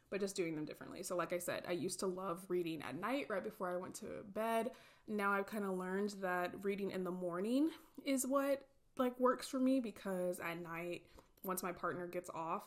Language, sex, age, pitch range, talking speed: English, female, 20-39, 175-210 Hz, 215 wpm